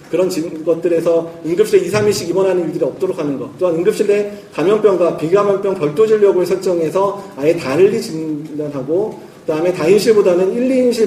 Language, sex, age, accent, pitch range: Korean, male, 40-59, native, 165-215 Hz